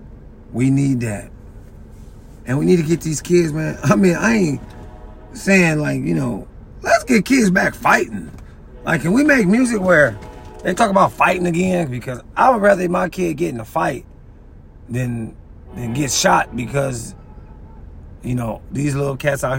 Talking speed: 170 wpm